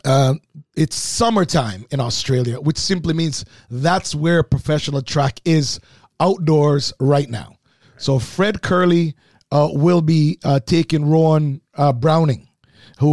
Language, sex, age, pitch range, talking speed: English, male, 30-49, 140-170 Hz, 130 wpm